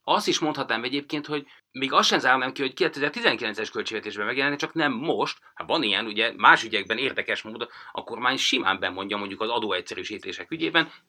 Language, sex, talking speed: Hungarian, male, 180 wpm